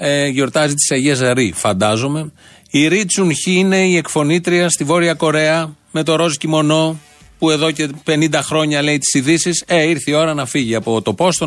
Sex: male